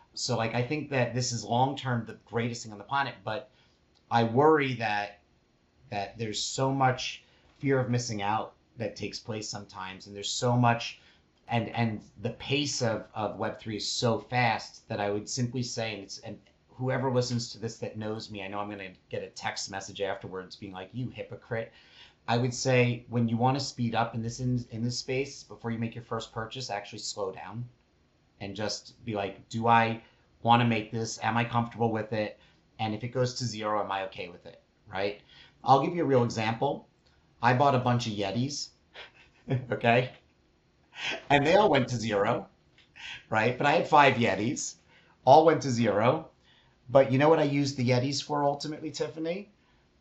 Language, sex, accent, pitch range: English, male, American, 105-130 Hz